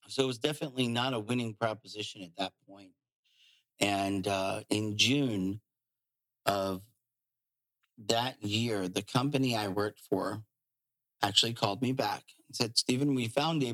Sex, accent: male, American